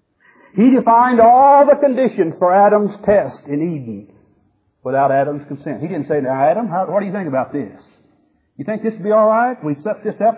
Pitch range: 155-240 Hz